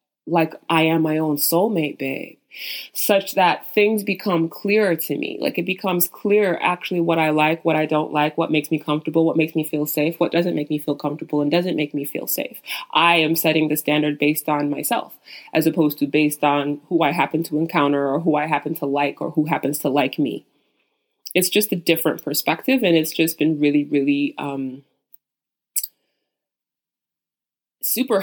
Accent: American